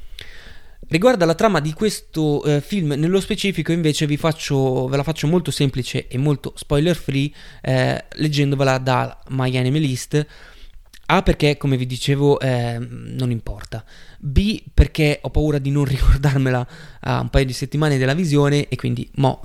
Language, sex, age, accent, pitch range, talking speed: Italian, male, 20-39, native, 130-155 Hz, 160 wpm